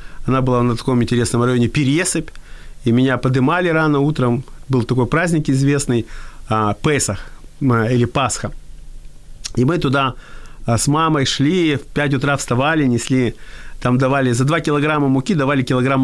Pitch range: 125-155 Hz